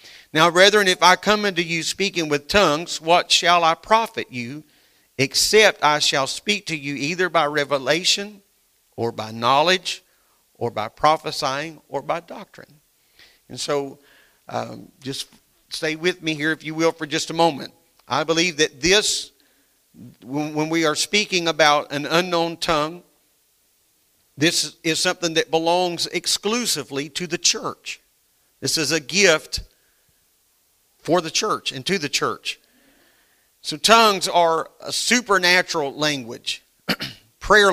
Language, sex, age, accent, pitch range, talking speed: English, male, 50-69, American, 140-175 Hz, 140 wpm